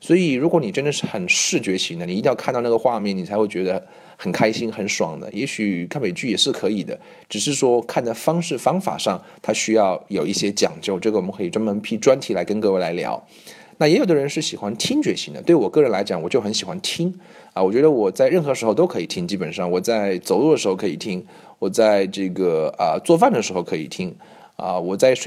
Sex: male